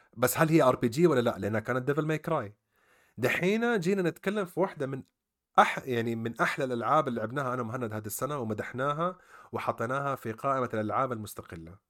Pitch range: 105-135 Hz